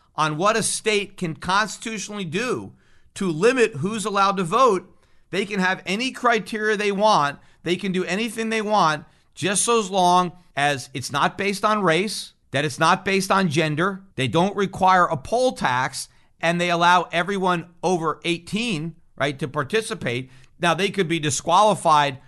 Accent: American